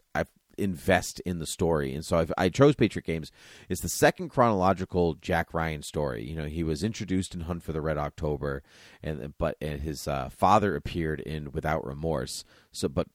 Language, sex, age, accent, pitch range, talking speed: English, male, 30-49, American, 80-100 Hz, 180 wpm